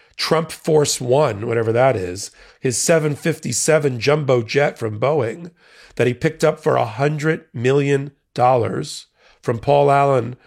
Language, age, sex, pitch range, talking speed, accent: English, 40-59, male, 120-150 Hz, 125 wpm, American